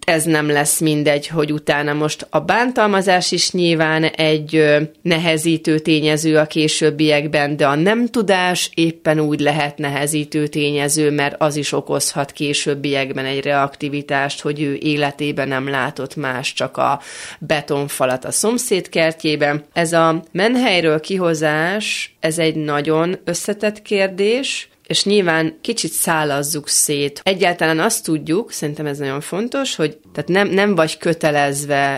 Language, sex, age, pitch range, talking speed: Hungarian, female, 30-49, 145-170 Hz, 135 wpm